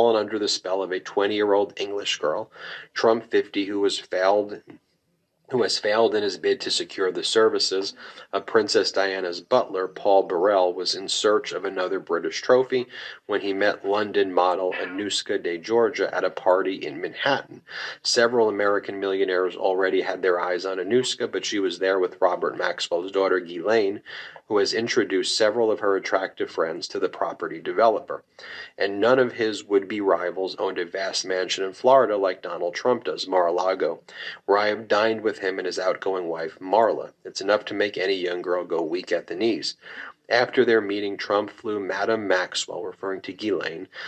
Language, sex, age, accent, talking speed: English, male, 30-49, American, 175 wpm